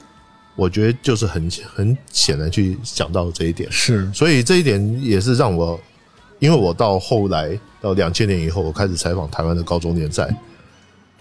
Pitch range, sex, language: 90-120 Hz, male, Chinese